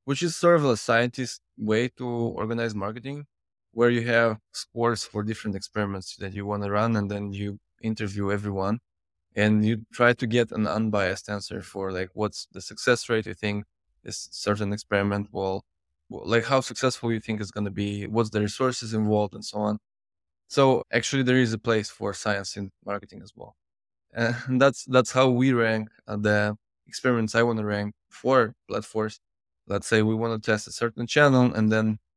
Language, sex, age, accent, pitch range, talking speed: English, male, 20-39, Polish, 105-125 Hz, 185 wpm